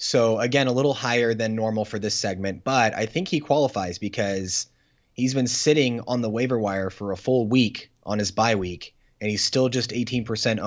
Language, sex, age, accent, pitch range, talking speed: English, male, 20-39, American, 105-130 Hz, 200 wpm